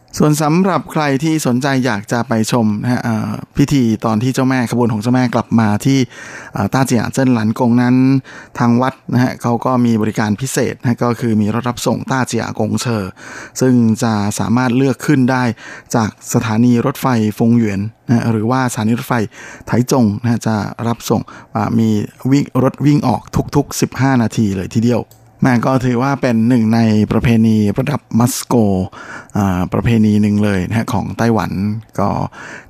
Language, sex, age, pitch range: Thai, male, 20-39, 110-125 Hz